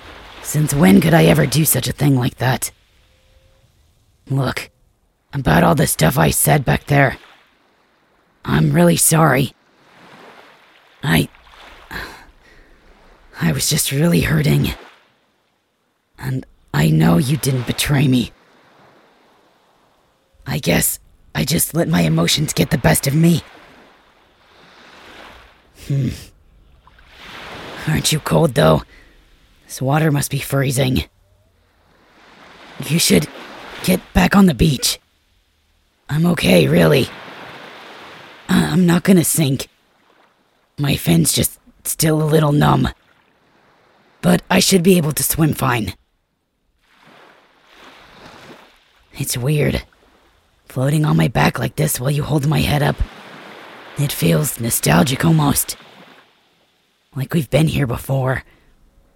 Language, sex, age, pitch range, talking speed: English, female, 30-49, 105-155 Hz, 115 wpm